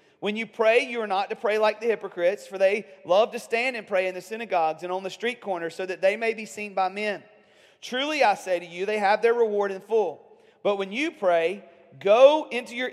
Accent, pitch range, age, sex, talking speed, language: American, 180-225 Hz, 40-59, male, 240 wpm, English